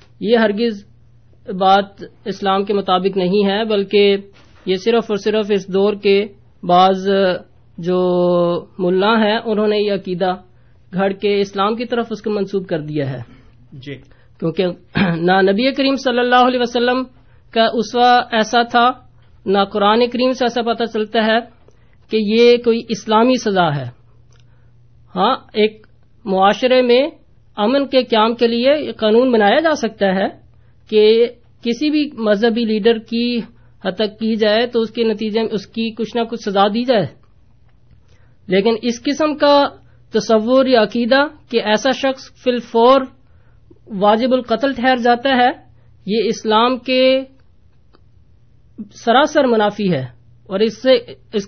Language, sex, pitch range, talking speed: Urdu, female, 185-240 Hz, 145 wpm